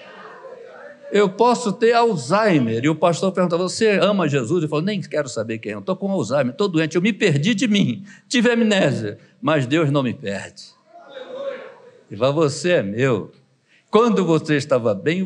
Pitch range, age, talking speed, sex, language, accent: 155-220 Hz, 60-79, 175 wpm, male, Portuguese, Brazilian